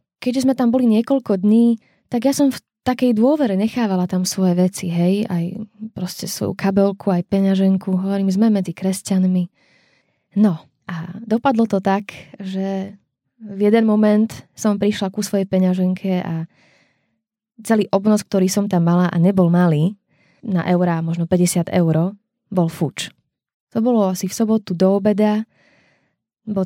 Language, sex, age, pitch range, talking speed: Slovak, female, 20-39, 185-220 Hz, 150 wpm